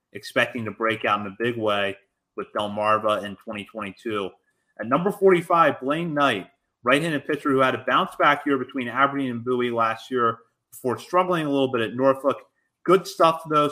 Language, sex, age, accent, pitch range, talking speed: English, male, 30-49, American, 115-140 Hz, 180 wpm